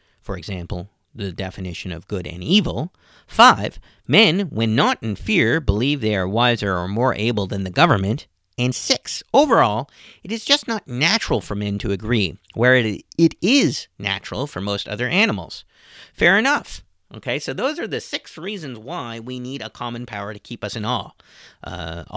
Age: 40-59